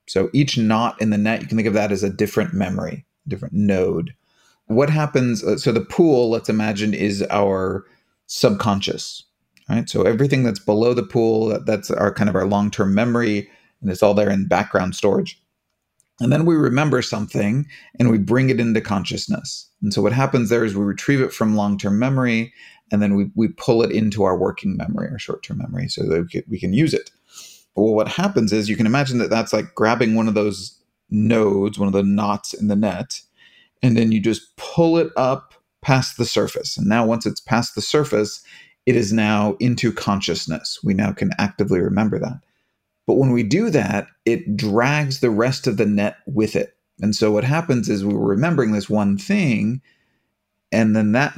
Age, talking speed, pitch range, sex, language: 30-49, 195 wpm, 105-125 Hz, male, English